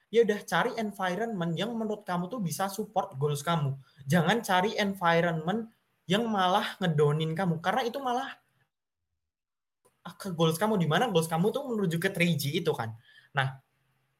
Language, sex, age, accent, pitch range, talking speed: Indonesian, male, 20-39, native, 160-205 Hz, 150 wpm